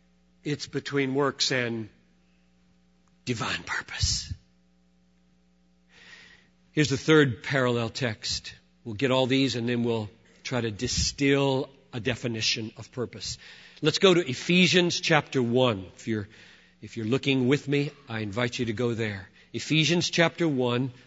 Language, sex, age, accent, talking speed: English, male, 50-69, American, 135 wpm